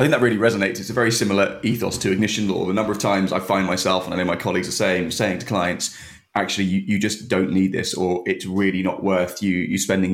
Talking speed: 265 wpm